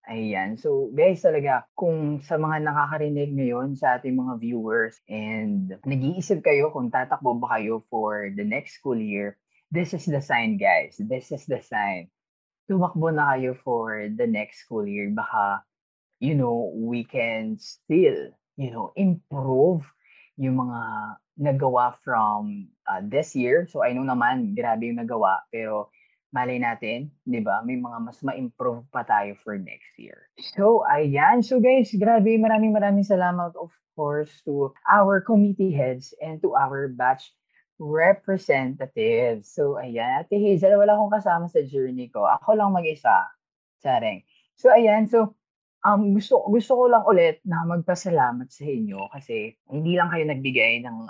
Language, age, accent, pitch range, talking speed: Filipino, 20-39, native, 125-205 Hz, 150 wpm